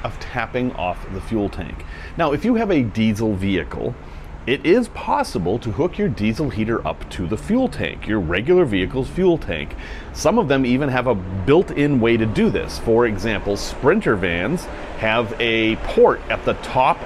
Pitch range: 95-140 Hz